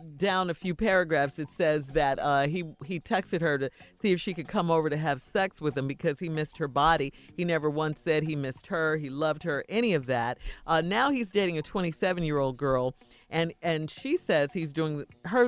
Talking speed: 225 wpm